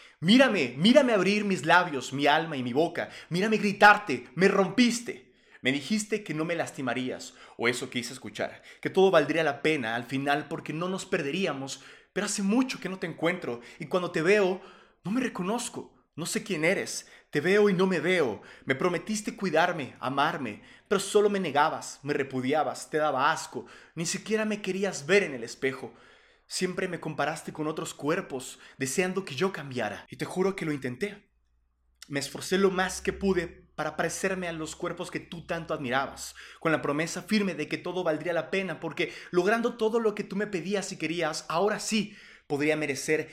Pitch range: 140-195 Hz